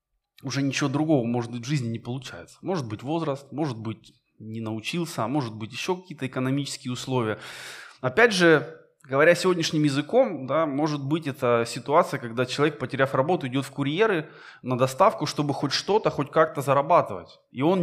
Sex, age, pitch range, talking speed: male, 20-39, 125-160 Hz, 170 wpm